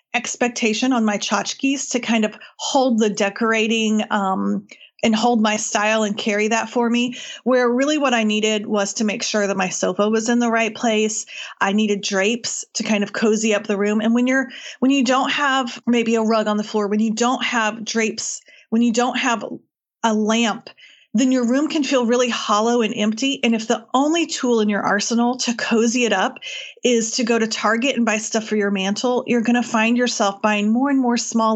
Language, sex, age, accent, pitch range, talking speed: English, female, 30-49, American, 220-260 Hz, 215 wpm